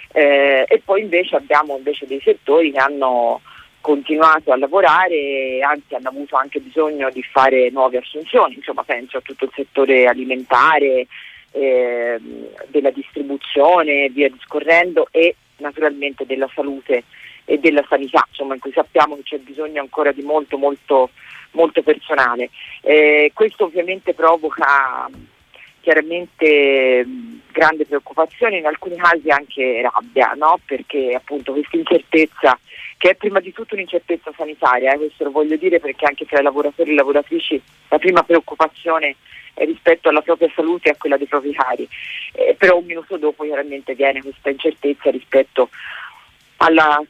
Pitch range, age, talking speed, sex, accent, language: 135-165 Hz, 40-59, 150 wpm, female, native, Italian